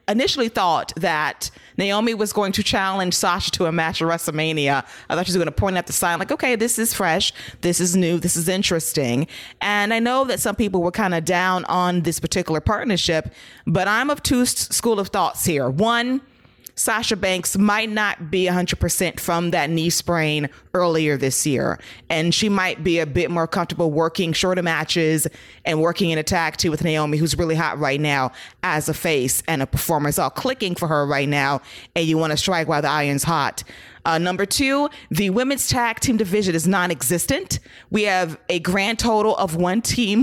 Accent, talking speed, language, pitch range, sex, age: American, 200 wpm, English, 160-195 Hz, female, 30-49